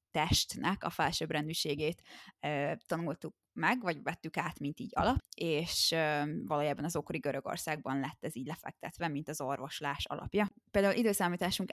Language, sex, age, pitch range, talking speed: Hungarian, female, 20-39, 155-180 Hz, 145 wpm